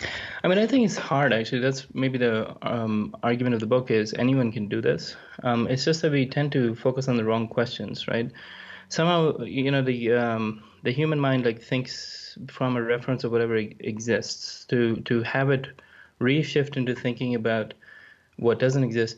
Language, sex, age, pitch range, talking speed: English, male, 20-39, 115-135 Hz, 190 wpm